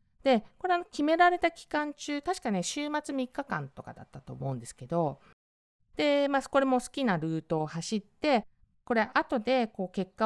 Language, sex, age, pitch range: Japanese, female, 50-69, 155-265 Hz